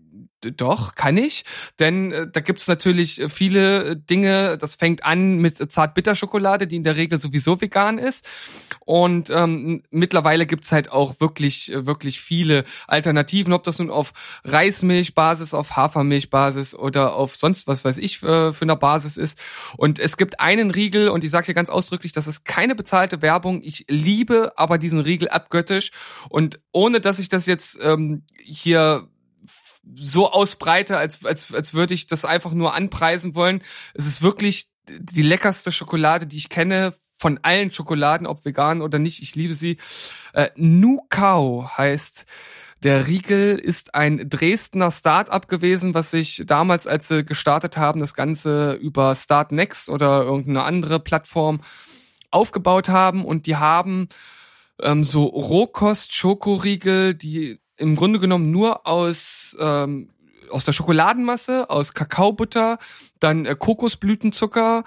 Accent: German